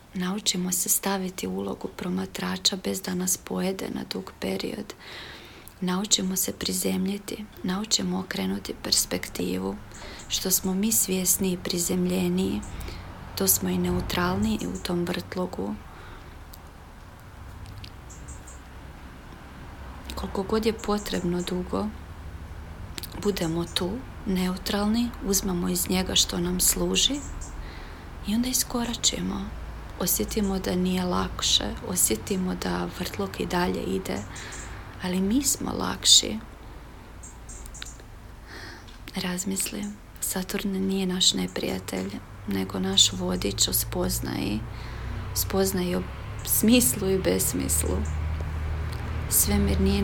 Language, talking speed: Croatian, 95 wpm